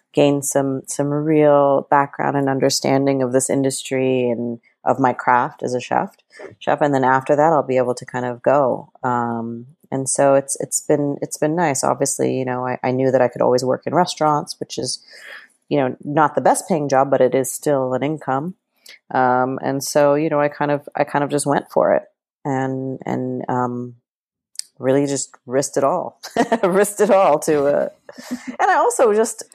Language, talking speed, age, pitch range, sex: English, 200 wpm, 30-49, 125-155 Hz, female